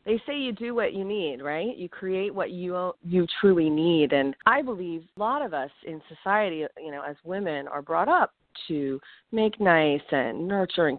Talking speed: 200 wpm